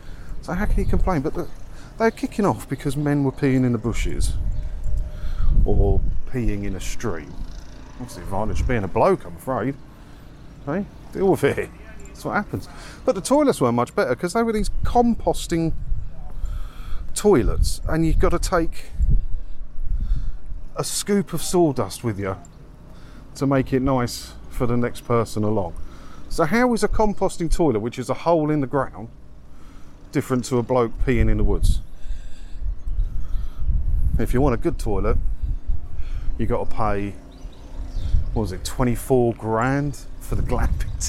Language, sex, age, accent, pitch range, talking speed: English, male, 40-59, British, 90-140 Hz, 160 wpm